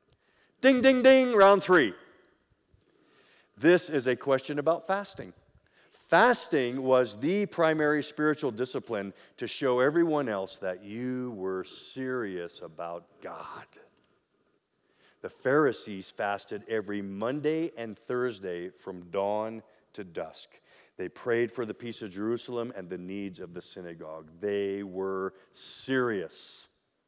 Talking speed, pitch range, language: 120 wpm, 100-150 Hz, English